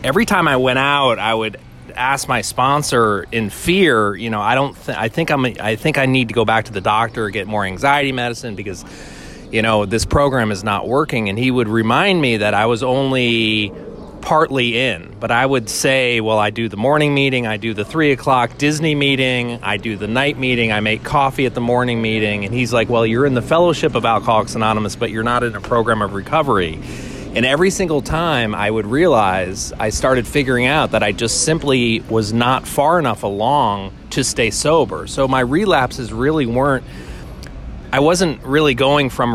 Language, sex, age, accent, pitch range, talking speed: English, male, 30-49, American, 110-135 Hz, 205 wpm